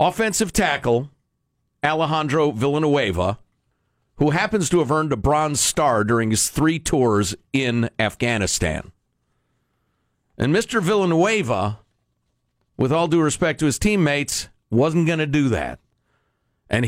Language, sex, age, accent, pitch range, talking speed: English, male, 50-69, American, 115-175 Hz, 120 wpm